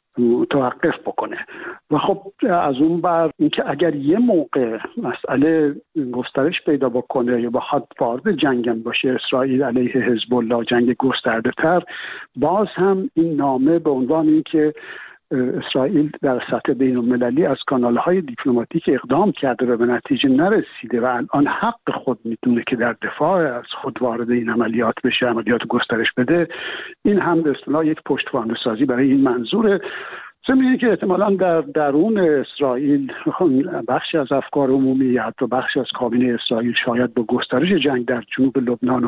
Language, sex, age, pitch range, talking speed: Persian, male, 60-79, 125-160 Hz, 150 wpm